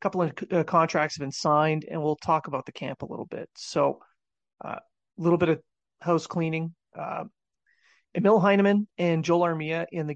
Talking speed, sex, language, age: 190 wpm, male, English, 30-49